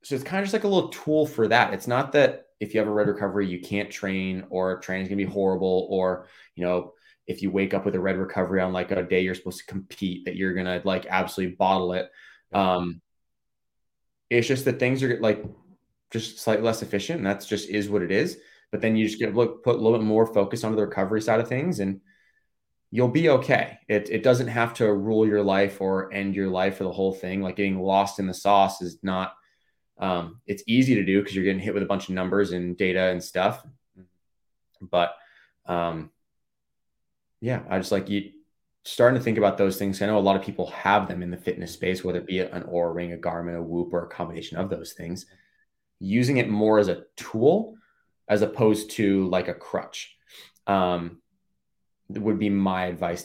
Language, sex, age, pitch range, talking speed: English, male, 20-39, 90-105 Hz, 220 wpm